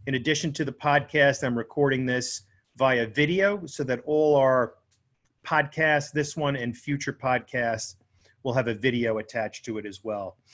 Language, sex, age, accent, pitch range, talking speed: English, male, 40-59, American, 120-150 Hz, 165 wpm